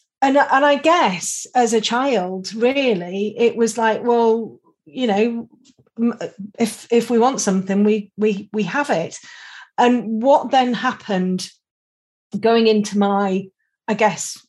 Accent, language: British, English